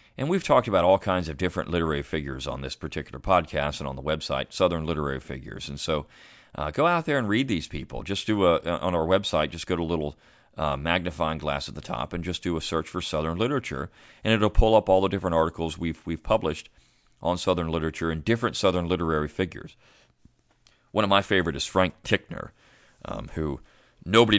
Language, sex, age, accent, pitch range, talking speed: English, male, 40-59, American, 75-100 Hz, 210 wpm